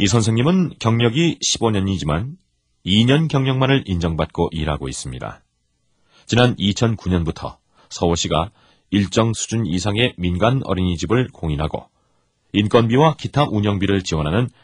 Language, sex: Korean, male